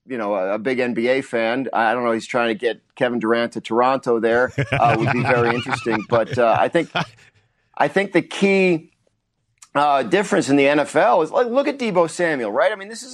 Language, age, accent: English, 40-59, American